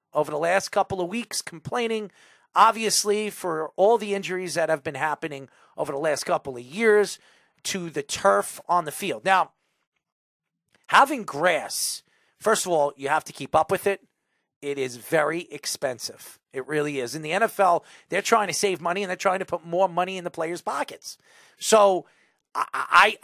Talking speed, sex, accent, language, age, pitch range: 180 wpm, male, American, English, 40-59, 150-200 Hz